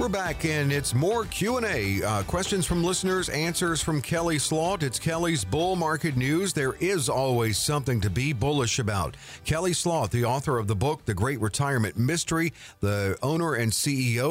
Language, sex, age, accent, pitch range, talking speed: English, male, 50-69, American, 110-160 Hz, 175 wpm